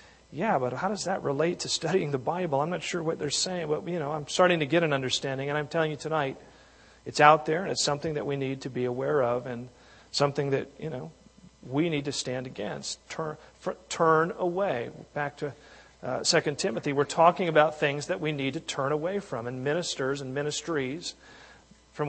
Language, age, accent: English, 40-59, American